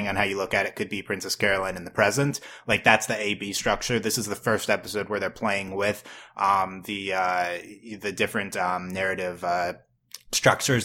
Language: English